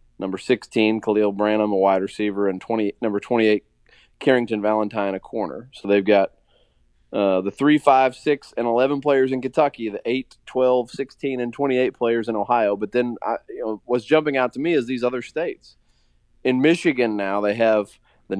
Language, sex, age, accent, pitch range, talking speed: English, male, 20-39, American, 105-125 Hz, 185 wpm